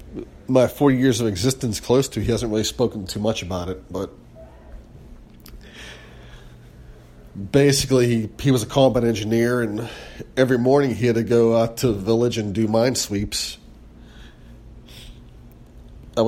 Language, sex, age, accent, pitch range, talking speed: English, male, 40-59, American, 100-125 Hz, 145 wpm